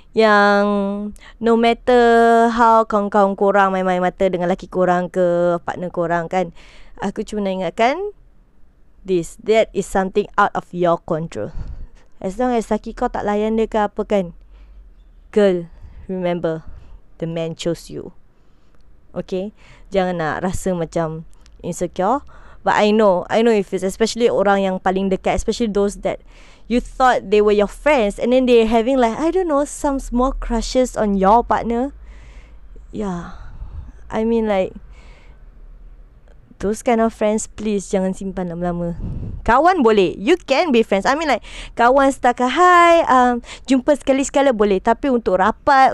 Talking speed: 150 wpm